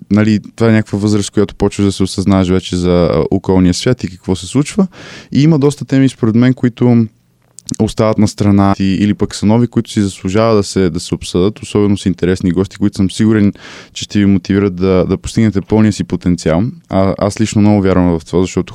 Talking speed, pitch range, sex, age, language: 210 wpm, 95-110 Hz, male, 20-39, Bulgarian